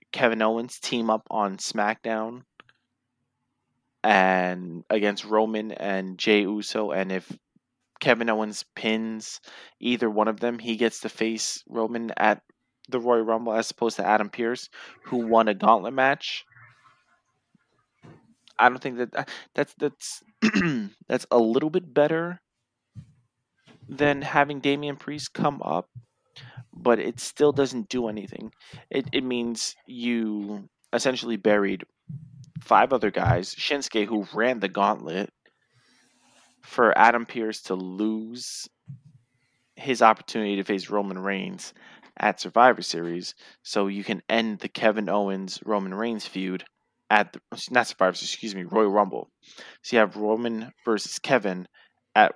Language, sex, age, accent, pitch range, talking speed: English, male, 20-39, American, 105-125 Hz, 130 wpm